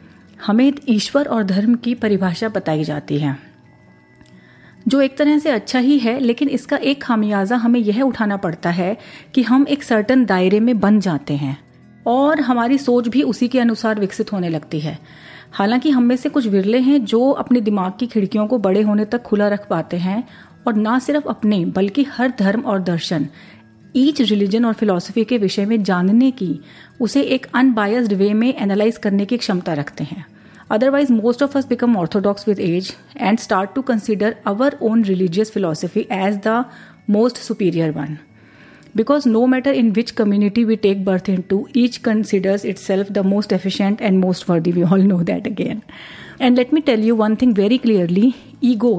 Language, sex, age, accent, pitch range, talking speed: Hindi, female, 30-49, native, 190-240 Hz, 180 wpm